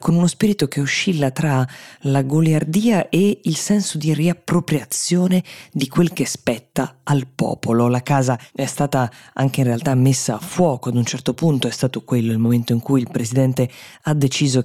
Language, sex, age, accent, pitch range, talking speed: Italian, female, 20-39, native, 125-155 Hz, 180 wpm